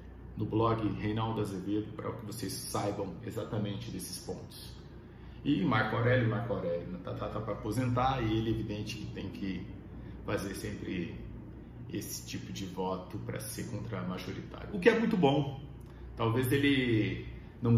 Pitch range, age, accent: 105-120 Hz, 40-59, Brazilian